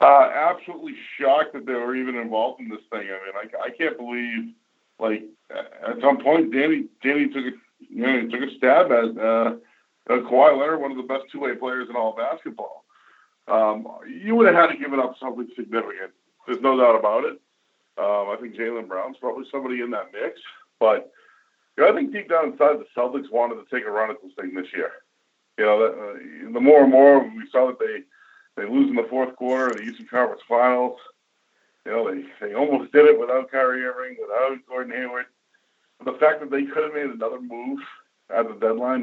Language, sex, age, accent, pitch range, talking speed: English, male, 50-69, American, 120-170 Hz, 215 wpm